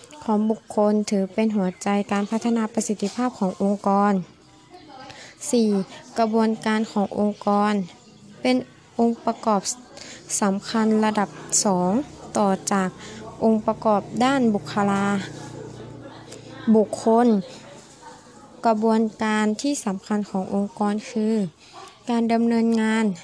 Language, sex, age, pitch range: Thai, female, 20-39, 200-230 Hz